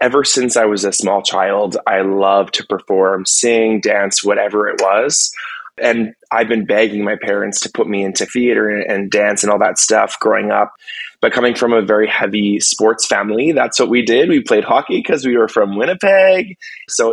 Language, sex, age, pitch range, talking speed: English, male, 20-39, 105-125 Hz, 195 wpm